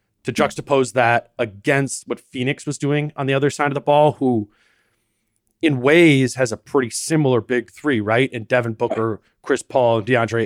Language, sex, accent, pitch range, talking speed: English, male, American, 115-140 Hz, 180 wpm